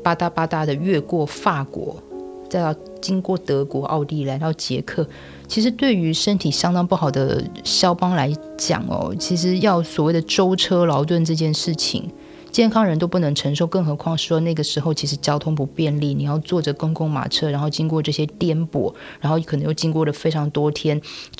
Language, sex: Chinese, female